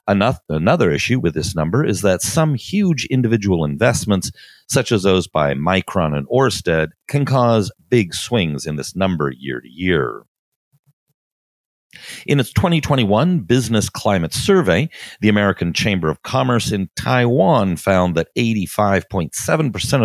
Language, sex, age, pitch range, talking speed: English, male, 40-59, 85-135 Hz, 130 wpm